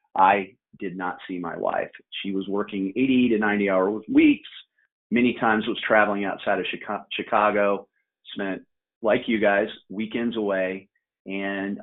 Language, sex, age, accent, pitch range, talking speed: English, male, 40-59, American, 95-115 Hz, 145 wpm